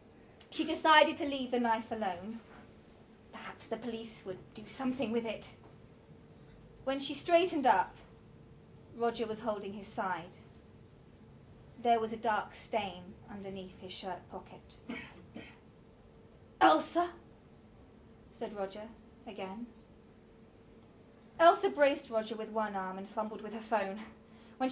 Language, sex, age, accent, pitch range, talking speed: English, female, 30-49, British, 225-335 Hz, 120 wpm